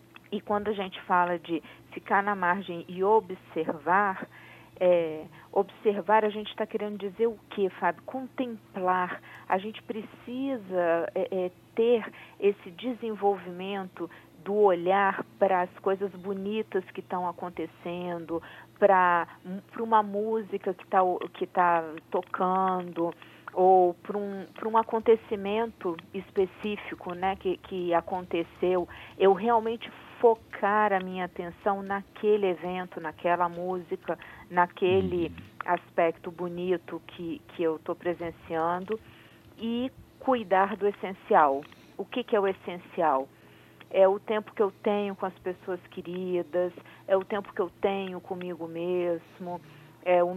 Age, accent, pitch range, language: 40-59, Brazilian, 175-205 Hz, Portuguese